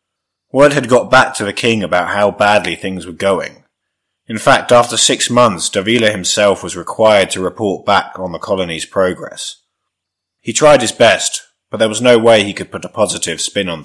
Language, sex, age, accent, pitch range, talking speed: English, male, 30-49, British, 100-120 Hz, 195 wpm